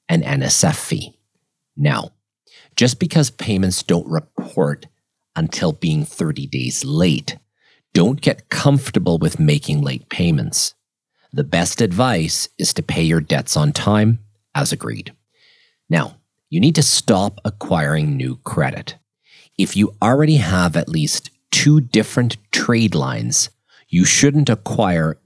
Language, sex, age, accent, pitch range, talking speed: English, male, 40-59, American, 90-140 Hz, 130 wpm